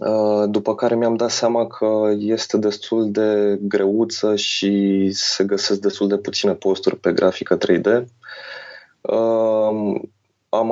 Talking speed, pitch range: 120 wpm, 100-115 Hz